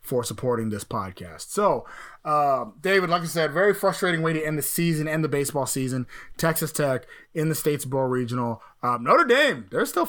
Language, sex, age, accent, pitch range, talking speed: English, male, 20-39, American, 140-185 Hz, 190 wpm